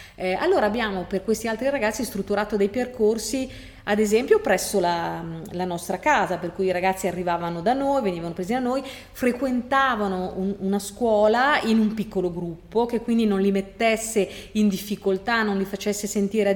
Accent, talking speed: native, 175 wpm